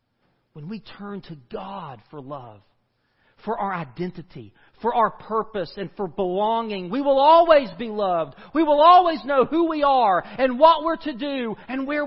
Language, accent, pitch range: English, American, 140-200 Hz